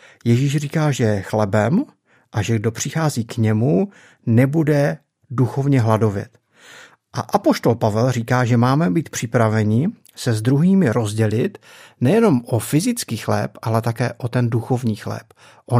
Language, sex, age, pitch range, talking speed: Czech, male, 50-69, 115-145 Hz, 140 wpm